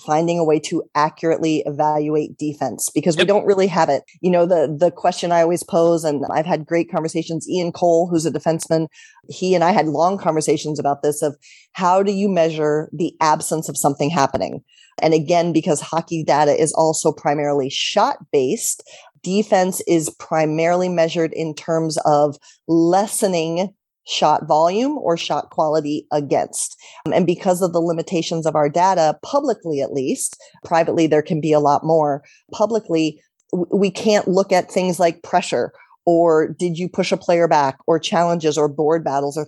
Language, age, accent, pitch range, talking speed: English, 30-49, American, 155-180 Hz, 170 wpm